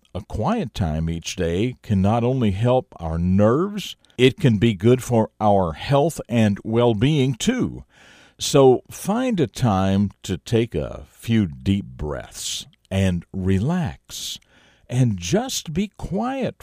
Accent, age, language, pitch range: American, 50-69, English, 95-140 Hz